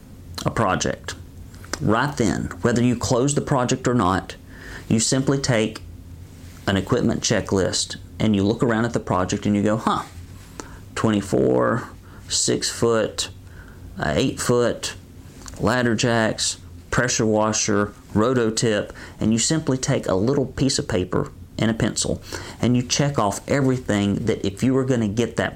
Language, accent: English, American